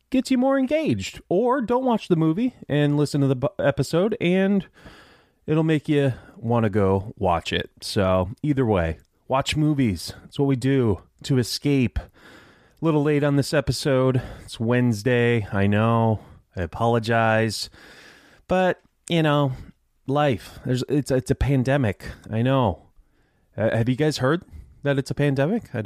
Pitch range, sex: 95-135 Hz, male